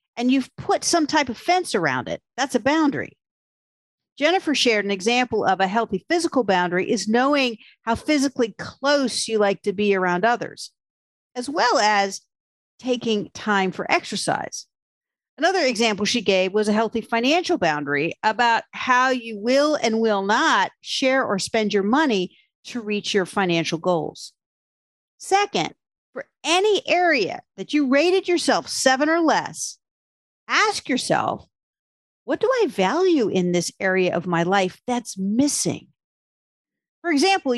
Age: 50-69